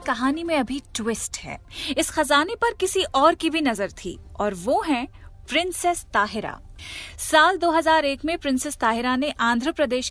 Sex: female